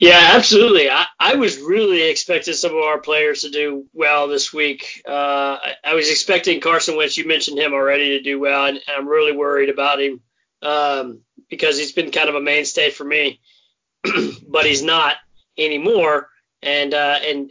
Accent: American